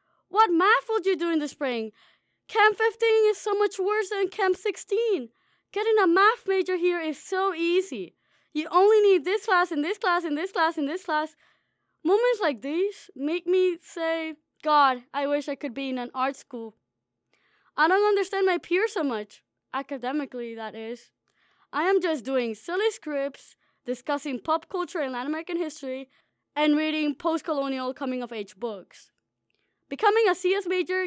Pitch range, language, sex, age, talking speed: 265-390 Hz, English, female, 20-39, 170 wpm